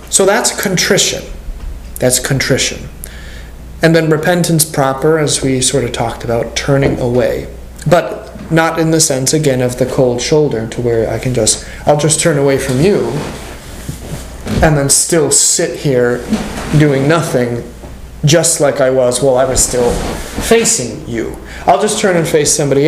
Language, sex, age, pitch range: English, male, 30-49, 120-150 Hz